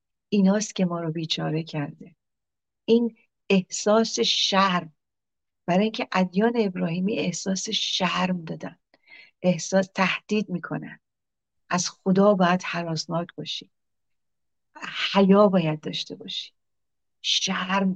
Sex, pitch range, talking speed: female, 170-195 Hz, 95 wpm